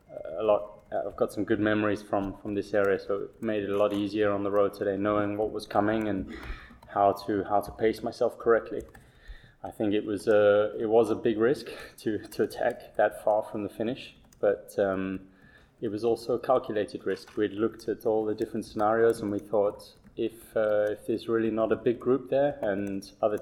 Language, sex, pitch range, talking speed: English, male, 100-115 Hz, 210 wpm